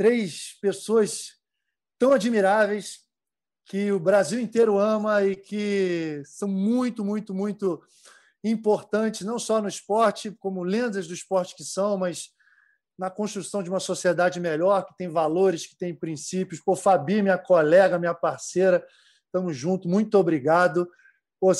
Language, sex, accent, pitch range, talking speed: Portuguese, male, Brazilian, 185-230 Hz, 140 wpm